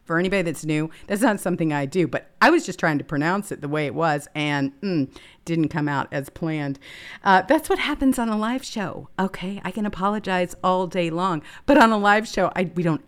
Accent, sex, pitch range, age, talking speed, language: American, female, 140-190 Hz, 40-59, 235 wpm, English